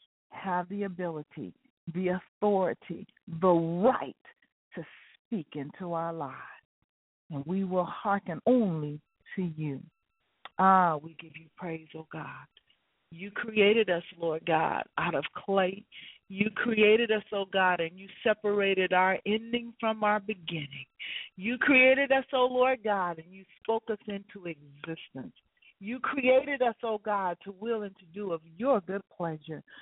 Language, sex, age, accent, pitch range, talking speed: English, female, 40-59, American, 165-235 Hz, 155 wpm